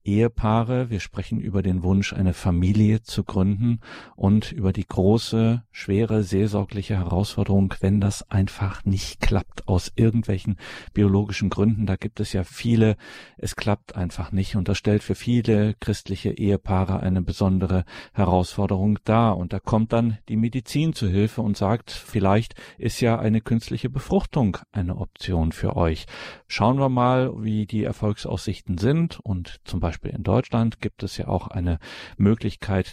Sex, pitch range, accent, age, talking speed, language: male, 95-110 Hz, German, 50-69, 155 wpm, German